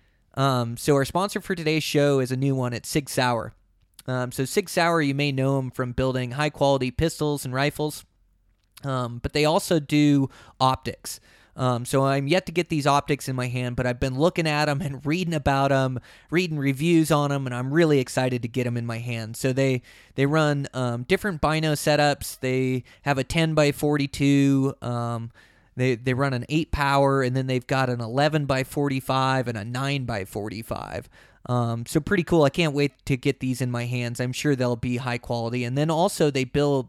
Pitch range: 125-145 Hz